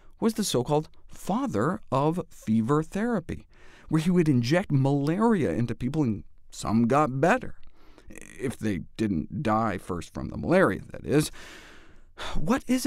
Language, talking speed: English, 140 wpm